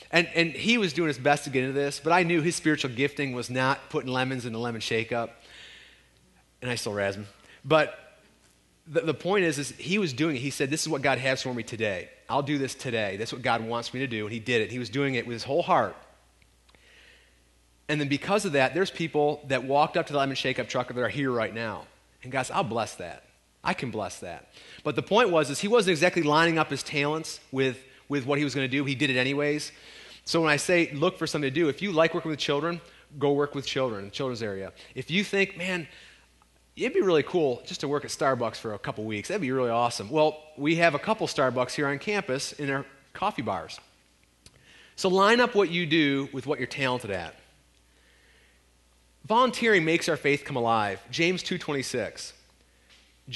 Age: 30-49